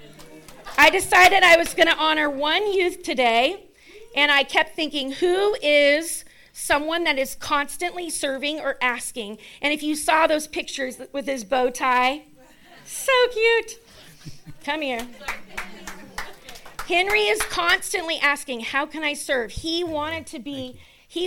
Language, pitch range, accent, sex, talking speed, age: English, 260-330 Hz, American, female, 140 wpm, 40-59